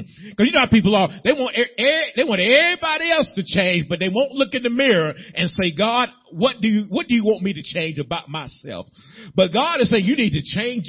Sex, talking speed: male, 250 wpm